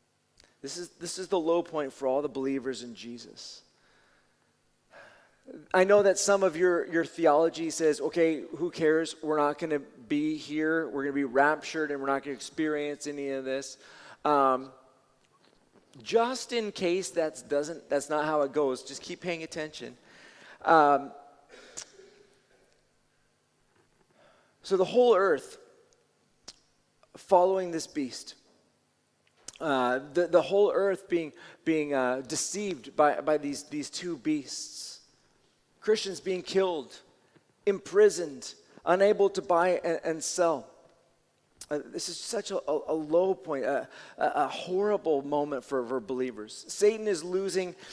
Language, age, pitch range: English, 30-49, 145-190 Hz